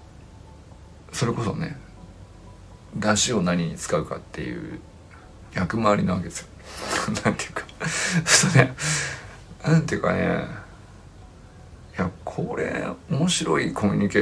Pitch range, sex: 90-150 Hz, male